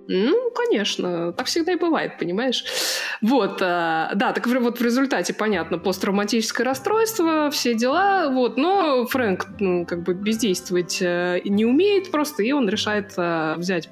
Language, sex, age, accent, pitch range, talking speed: Russian, female, 20-39, native, 185-255 Hz, 140 wpm